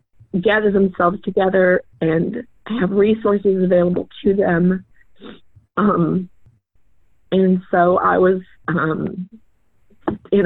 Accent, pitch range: American, 160-190 Hz